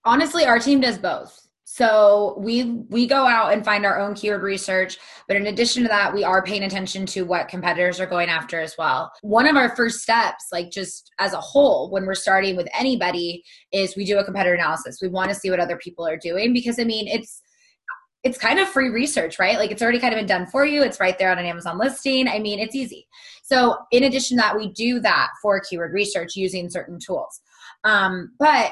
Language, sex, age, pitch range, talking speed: English, female, 20-39, 185-240 Hz, 225 wpm